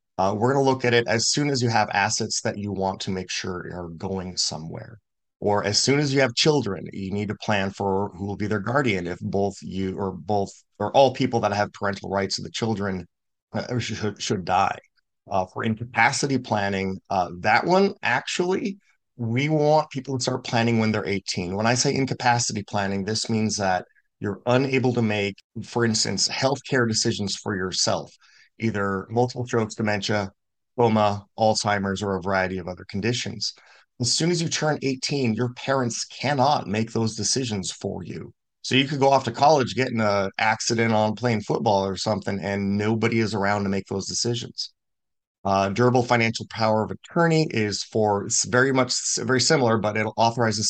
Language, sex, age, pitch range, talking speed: English, male, 30-49, 100-125 Hz, 190 wpm